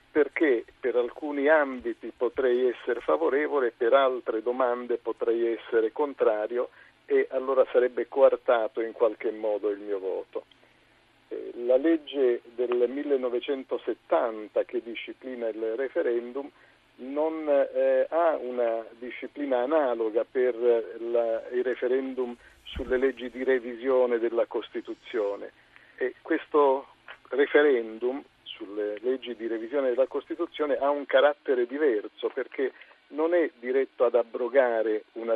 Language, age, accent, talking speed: Italian, 50-69, native, 115 wpm